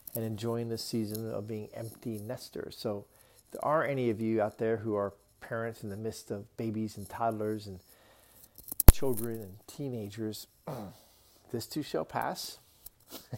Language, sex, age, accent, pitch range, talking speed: English, male, 40-59, American, 105-130 Hz, 150 wpm